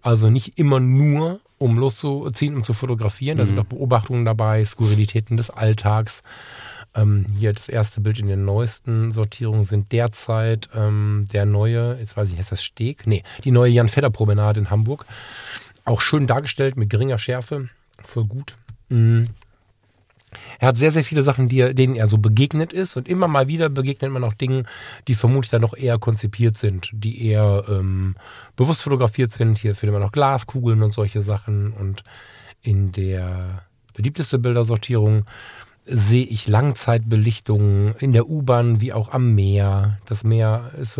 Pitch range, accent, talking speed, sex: 105-130 Hz, German, 160 wpm, male